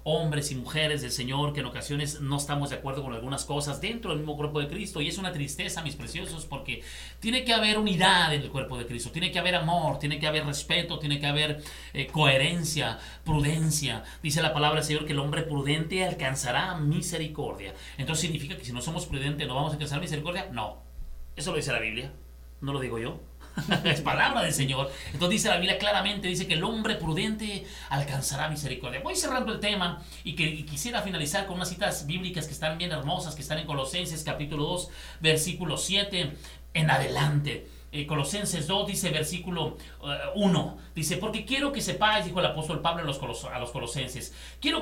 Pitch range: 145-180 Hz